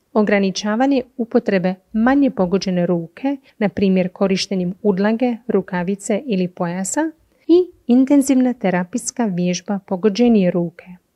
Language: Croatian